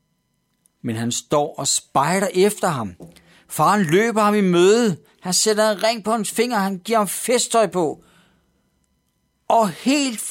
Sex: male